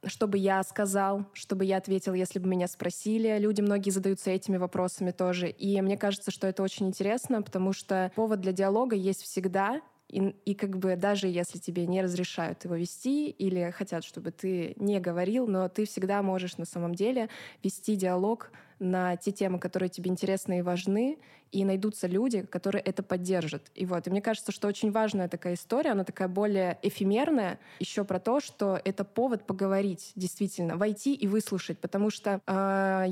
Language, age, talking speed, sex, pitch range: Russian, 20-39, 180 wpm, female, 185-215 Hz